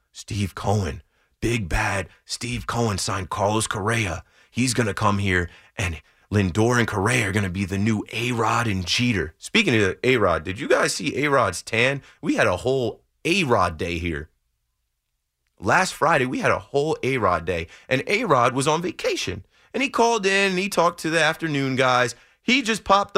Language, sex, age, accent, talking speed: English, male, 30-49, American, 180 wpm